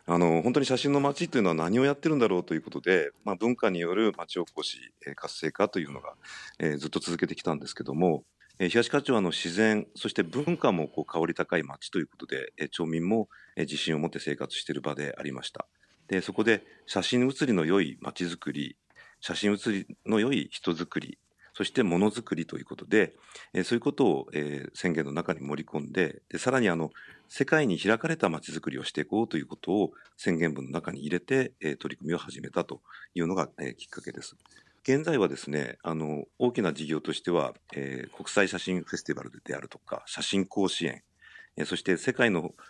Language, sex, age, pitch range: Japanese, male, 40-59, 80-120 Hz